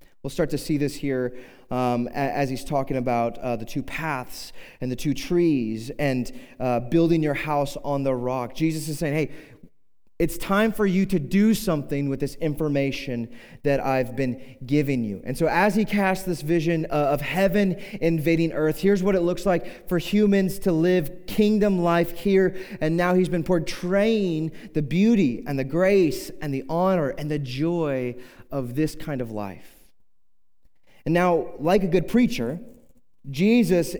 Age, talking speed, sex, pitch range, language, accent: 30-49, 170 wpm, male, 140-185 Hz, English, American